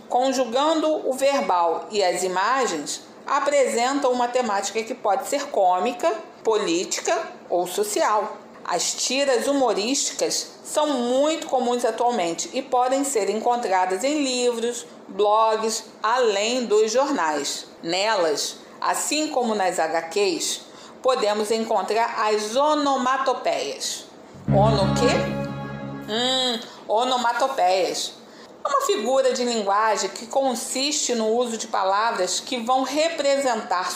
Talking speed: 100 wpm